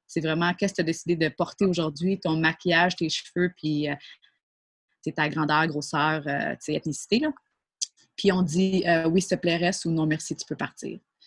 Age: 20-39